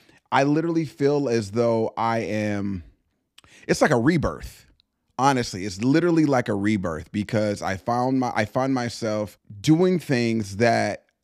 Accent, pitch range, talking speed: American, 105-140 Hz, 145 wpm